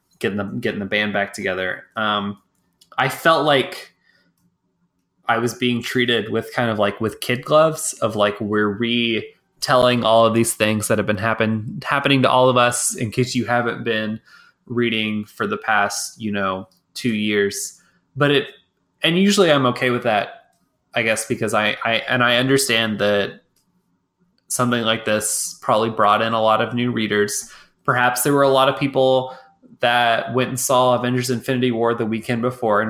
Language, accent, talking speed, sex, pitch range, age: English, American, 175 wpm, male, 110-140 Hz, 20-39